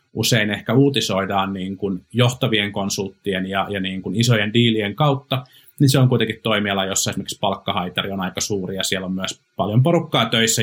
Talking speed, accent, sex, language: 180 wpm, native, male, Finnish